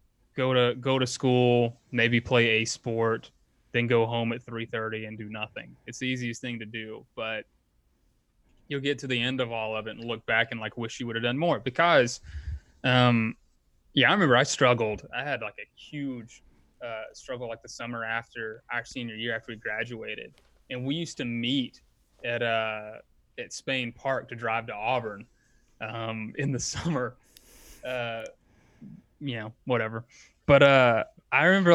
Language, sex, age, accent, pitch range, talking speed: English, male, 20-39, American, 115-130 Hz, 180 wpm